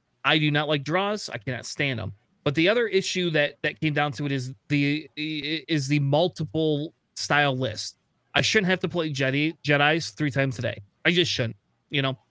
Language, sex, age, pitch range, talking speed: English, male, 30-49, 135-180 Hz, 205 wpm